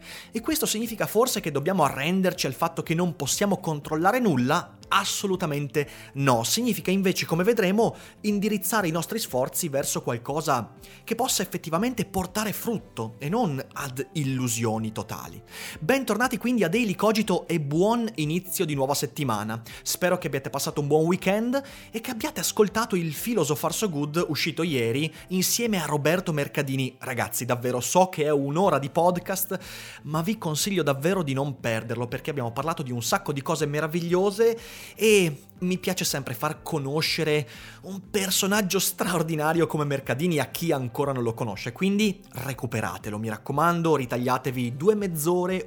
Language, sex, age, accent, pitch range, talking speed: Italian, male, 30-49, native, 135-200 Hz, 150 wpm